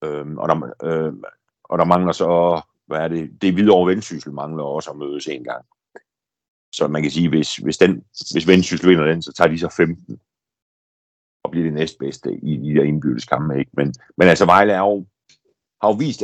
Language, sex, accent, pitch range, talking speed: Danish, male, native, 80-115 Hz, 200 wpm